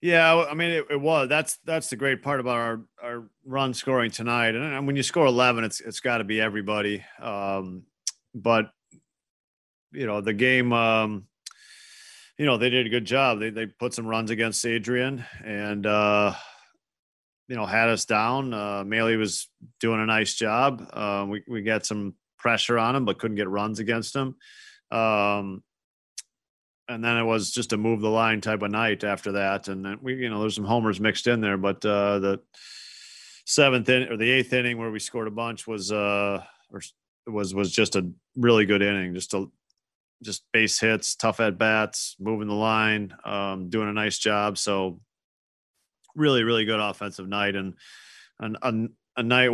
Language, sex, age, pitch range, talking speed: English, male, 40-59, 105-125 Hz, 185 wpm